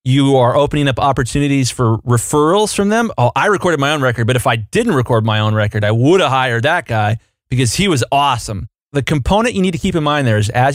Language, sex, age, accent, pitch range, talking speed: English, male, 30-49, American, 120-155 Hz, 245 wpm